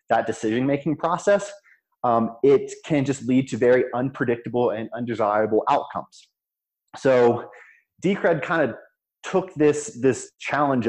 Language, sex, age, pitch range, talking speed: English, male, 20-39, 110-135 Hz, 125 wpm